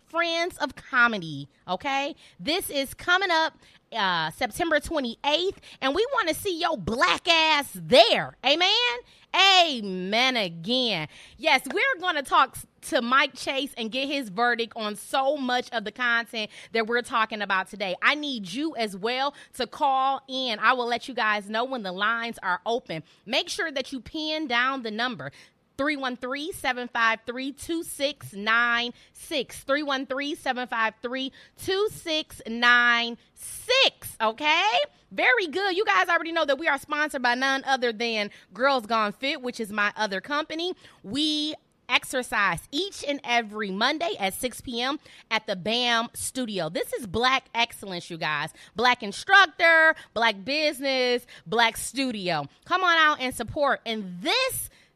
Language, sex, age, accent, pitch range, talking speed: English, female, 20-39, American, 225-300 Hz, 140 wpm